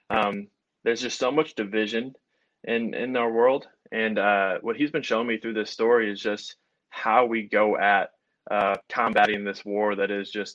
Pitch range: 105-115 Hz